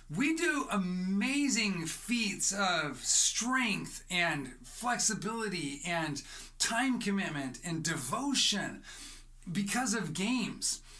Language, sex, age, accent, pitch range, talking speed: English, male, 40-59, American, 165-225 Hz, 85 wpm